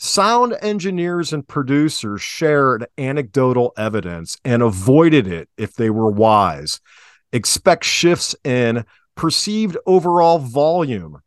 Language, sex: English, male